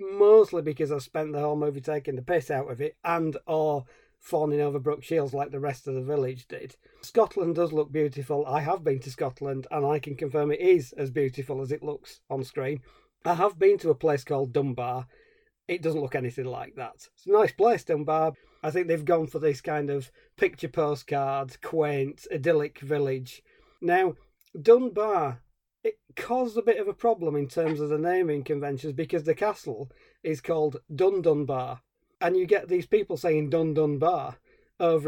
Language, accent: English, British